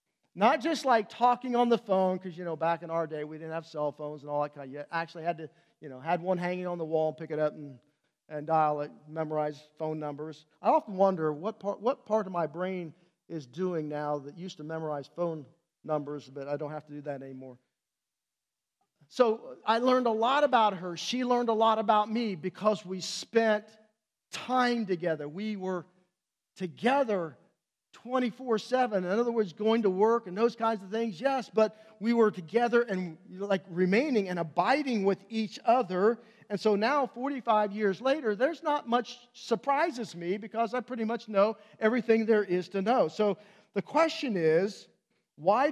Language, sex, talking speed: English, male, 190 wpm